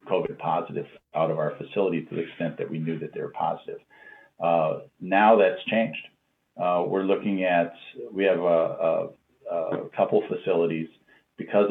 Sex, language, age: male, English, 50-69